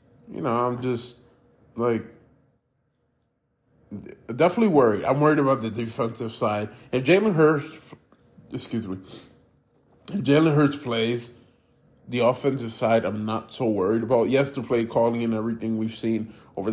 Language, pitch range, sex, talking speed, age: English, 110-135 Hz, male, 135 wpm, 20-39